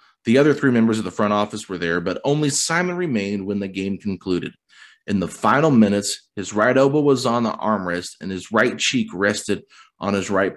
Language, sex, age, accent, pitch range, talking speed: English, male, 30-49, American, 100-125 Hz, 210 wpm